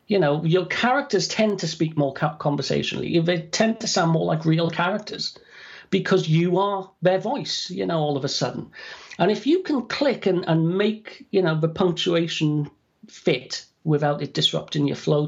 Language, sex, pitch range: English, male, 150-205 Hz